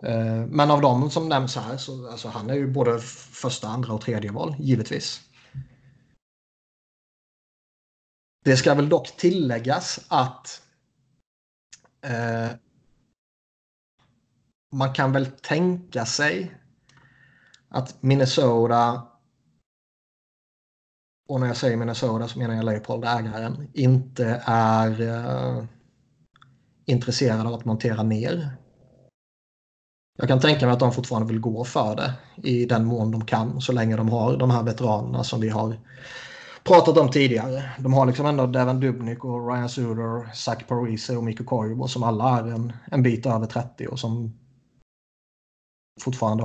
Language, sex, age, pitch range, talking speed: Swedish, male, 30-49, 115-135 Hz, 135 wpm